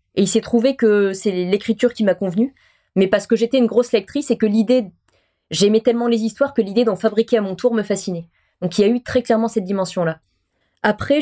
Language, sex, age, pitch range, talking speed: French, female, 20-39, 200-240 Hz, 230 wpm